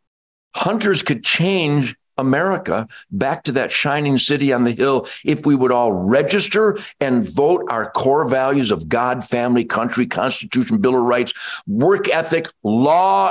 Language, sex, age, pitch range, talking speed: English, male, 50-69, 130-195 Hz, 150 wpm